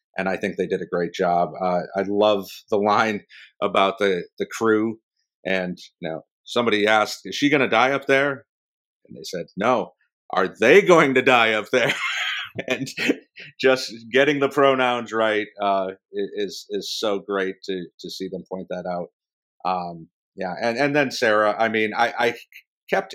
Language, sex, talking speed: English, male, 180 wpm